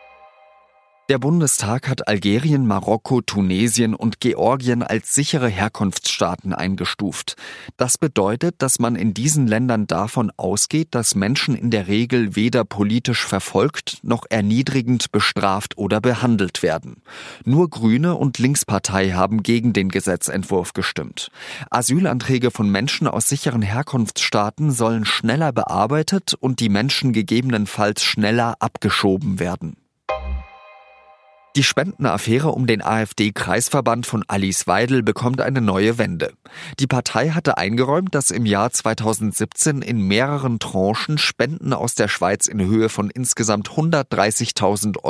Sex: male